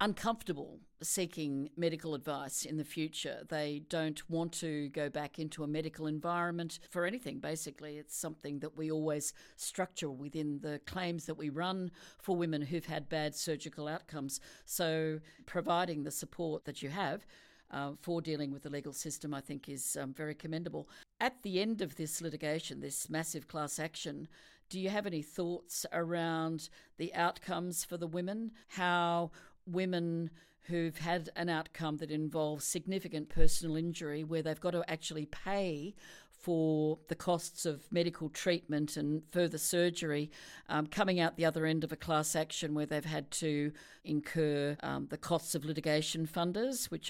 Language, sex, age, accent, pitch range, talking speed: English, female, 50-69, Australian, 150-170 Hz, 165 wpm